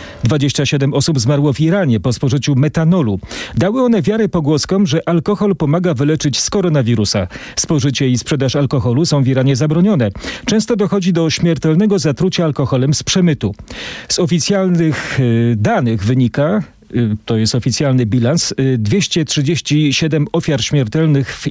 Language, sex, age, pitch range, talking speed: Polish, male, 40-59, 125-180 Hz, 130 wpm